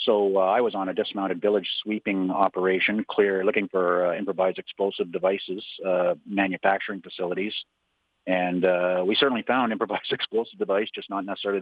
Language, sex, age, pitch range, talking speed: English, male, 40-59, 90-100 Hz, 160 wpm